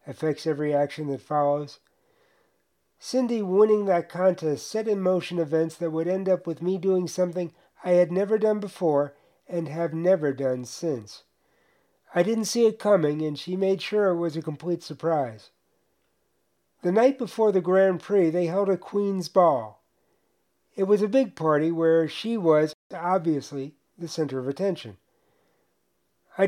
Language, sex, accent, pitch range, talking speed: English, male, American, 150-195 Hz, 160 wpm